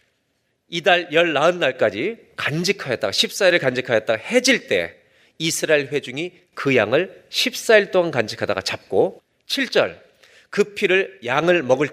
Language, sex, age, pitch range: Korean, male, 40-59, 160-230 Hz